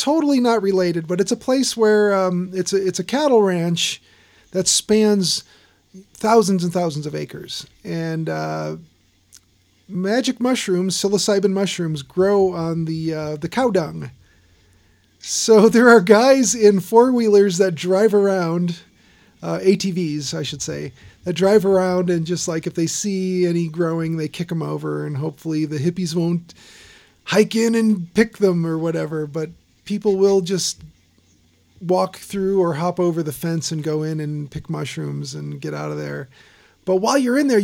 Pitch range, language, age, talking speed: 150-195 Hz, English, 40-59, 165 wpm